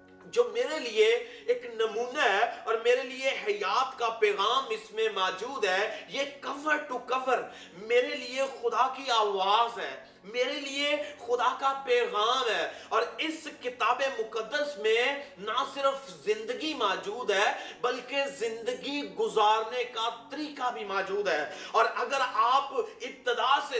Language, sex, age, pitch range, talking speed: Urdu, male, 30-49, 240-315 Hz, 140 wpm